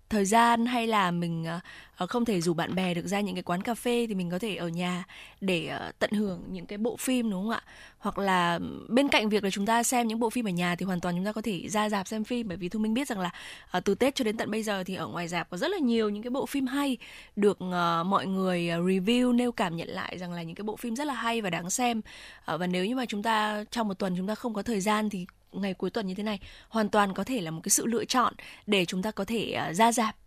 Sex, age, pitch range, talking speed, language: female, 20-39, 185-235 Hz, 285 wpm, Vietnamese